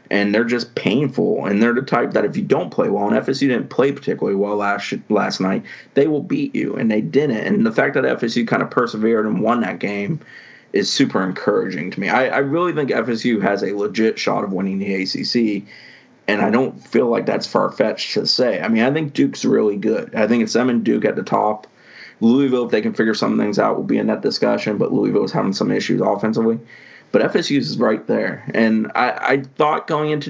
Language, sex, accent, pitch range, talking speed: English, male, American, 100-125 Hz, 230 wpm